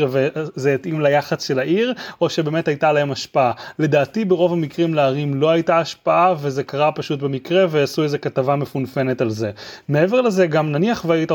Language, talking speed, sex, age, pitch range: Hebrew, 170 wpm, male, 30-49, 145-185 Hz